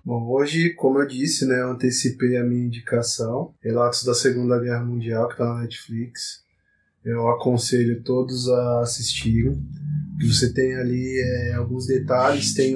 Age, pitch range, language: 20-39, 120-140 Hz, Portuguese